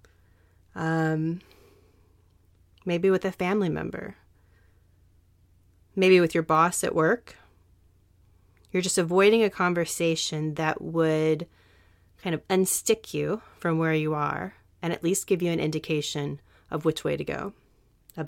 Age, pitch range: 30-49, 150-180 Hz